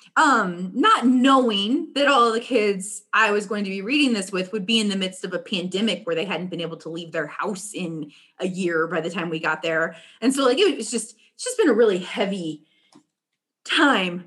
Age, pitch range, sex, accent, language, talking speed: 20-39, 185-265 Hz, female, American, English, 225 wpm